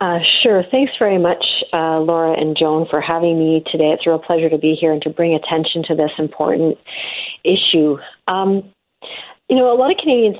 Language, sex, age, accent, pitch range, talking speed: English, female, 40-59, American, 165-205 Hz, 200 wpm